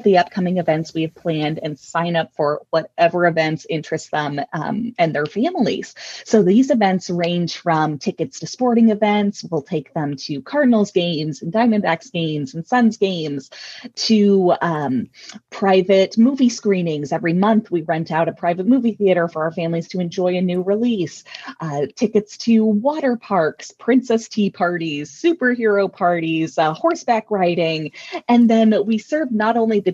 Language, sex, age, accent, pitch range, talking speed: English, female, 20-39, American, 165-215 Hz, 160 wpm